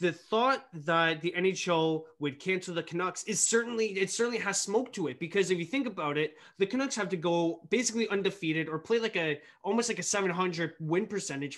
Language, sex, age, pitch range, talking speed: English, male, 20-39, 160-220 Hz, 205 wpm